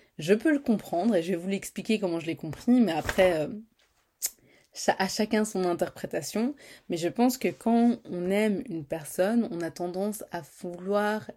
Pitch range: 165-210 Hz